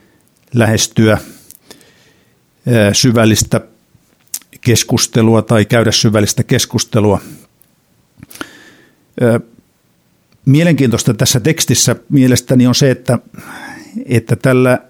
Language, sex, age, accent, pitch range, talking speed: Finnish, male, 60-79, native, 110-130 Hz, 65 wpm